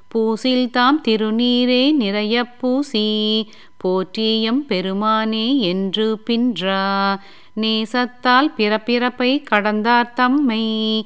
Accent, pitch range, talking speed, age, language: native, 205-245 Hz, 65 wpm, 30-49, Tamil